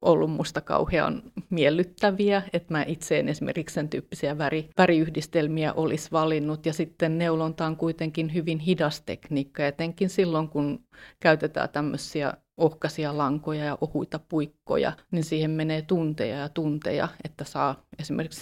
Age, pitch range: 30-49, 150-175 Hz